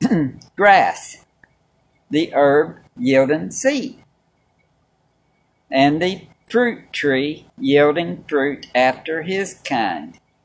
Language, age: English, 50-69